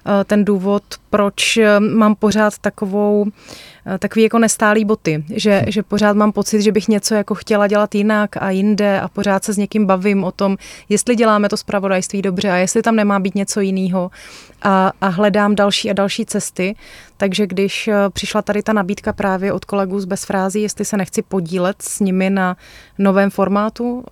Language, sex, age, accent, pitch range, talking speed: Czech, female, 30-49, native, 185-205 Hz, 175 wpm